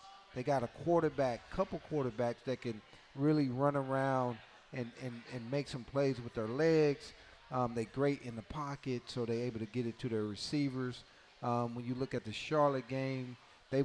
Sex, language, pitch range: male, English, 125-150 Hz